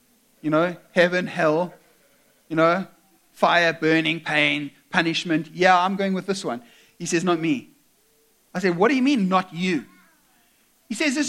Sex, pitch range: male, 175-255 Hz